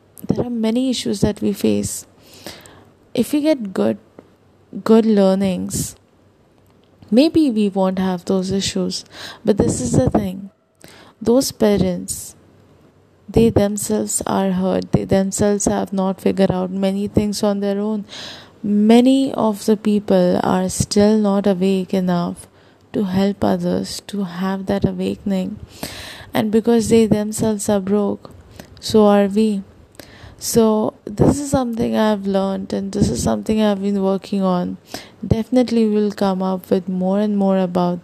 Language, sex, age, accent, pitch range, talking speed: English, female, 20-39, Indian, 180-215 Hz, 140 wpm